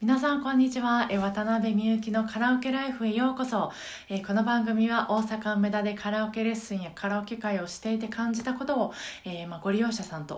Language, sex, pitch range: Japanese, female, 180-235 Hz